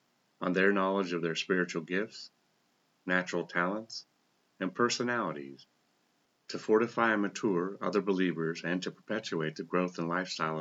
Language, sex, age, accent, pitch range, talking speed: English, male, 40-59, American, 85-100 Hz, 135 wpm